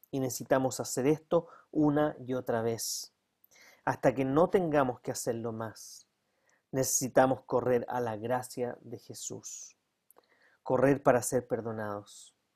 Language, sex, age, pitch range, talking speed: Spanish, male, 40-59, 115-135 Hz, 125 wpm